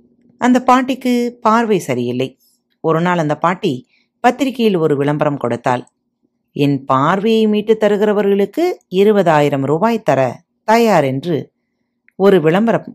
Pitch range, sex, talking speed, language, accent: 145-225 Hz, female, 100 wpm, Tamil, native